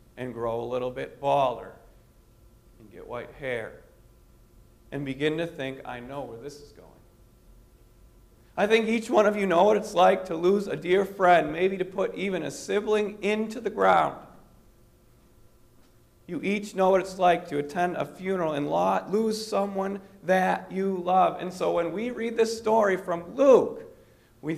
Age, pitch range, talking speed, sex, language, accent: 40-59, 145-210 Hz, 170 wpm, male, English, American